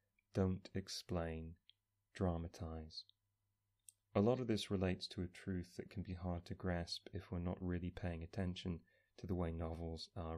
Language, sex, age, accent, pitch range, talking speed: English, male, 30-49, British, 85-100 Hz, 160 wpm